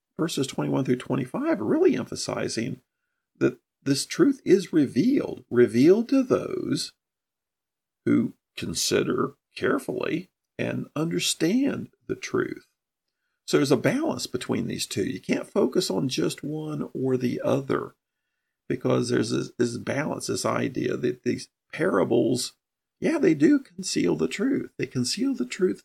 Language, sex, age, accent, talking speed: English, male, 50-69, American, 130 wpm